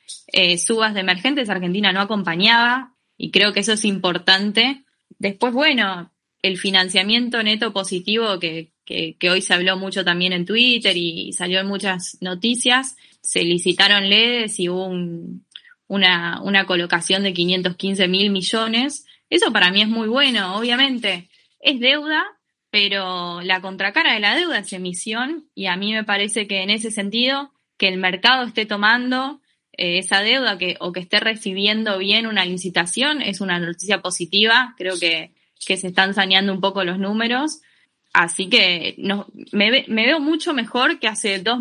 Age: 10-29